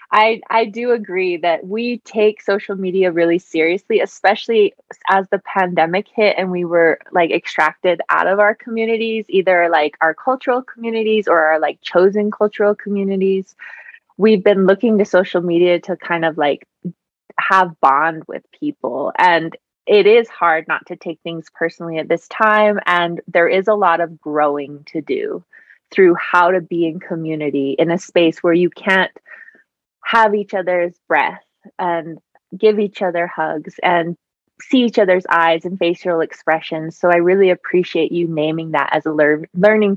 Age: 20-39